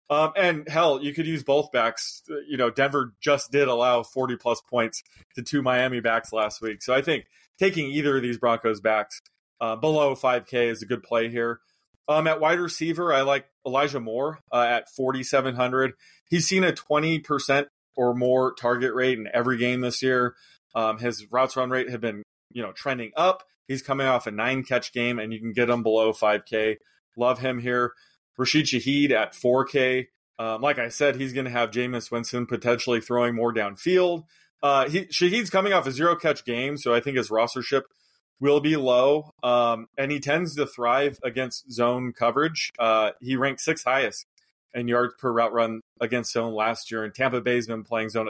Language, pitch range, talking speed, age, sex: English, 120-145 Hz, 190 wpm, 20-39, male